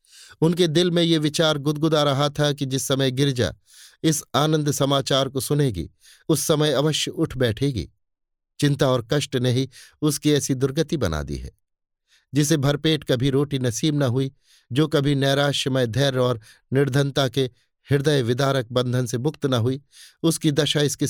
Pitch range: 115-145 Hz